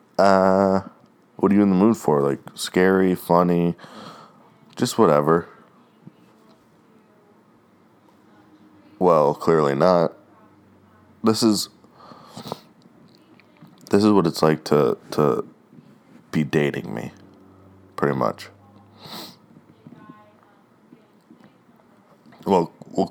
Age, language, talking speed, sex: 20-39, English, 85 wpm, male